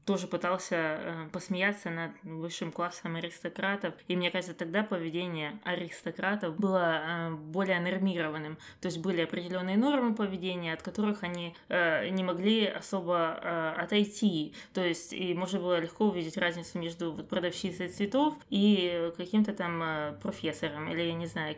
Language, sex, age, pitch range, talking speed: Russian, female, 20-39, 170-210 Hz, 150 wpm